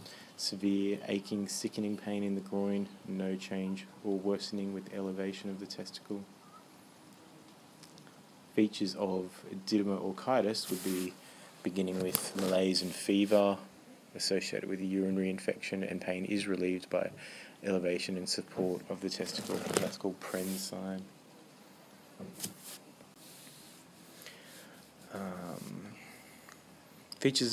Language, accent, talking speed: English, Australian, 105 wpm